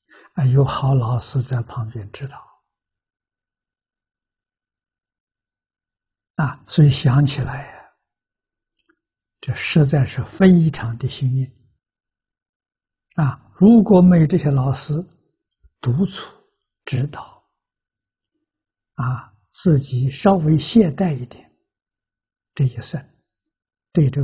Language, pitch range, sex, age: Chinese, 115-165 Hz, male, 60-79